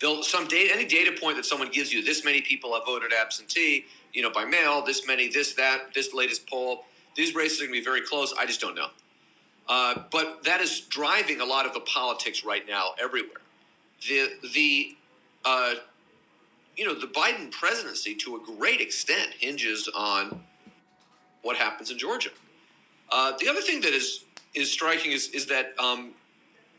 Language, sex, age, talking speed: English, male, 40-59, 180 wpm